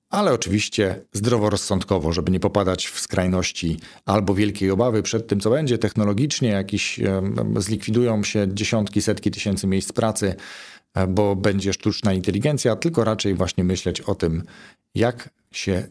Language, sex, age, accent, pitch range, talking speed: Polish, male, 40-59, native, 95-120 Hz, 135 wpm